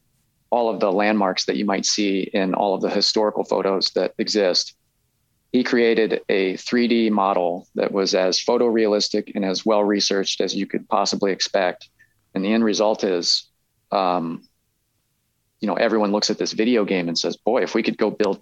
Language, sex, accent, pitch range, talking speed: English, male, American, 95-110 Hz, 180 wpm